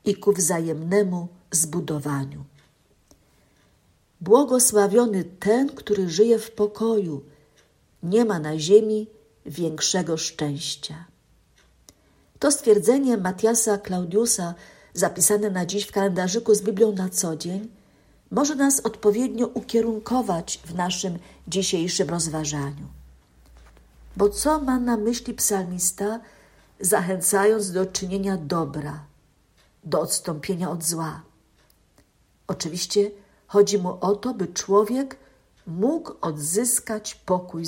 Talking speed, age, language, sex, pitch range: 100 wpm, 50-69, Polish, female, 170-220 Hz